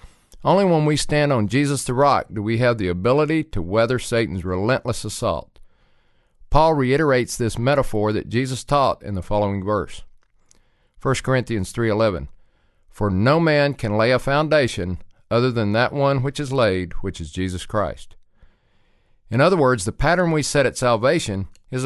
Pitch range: 100-140 Hz